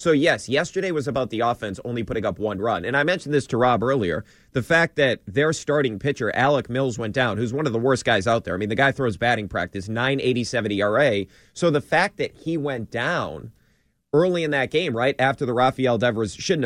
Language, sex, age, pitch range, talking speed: English, male, 30-49, 115-145 Hz, 230 wpm